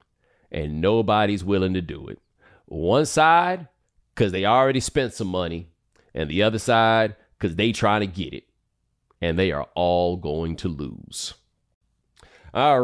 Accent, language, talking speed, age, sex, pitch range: American, English, 150 wpm, 40-59, male, 115-155 Hz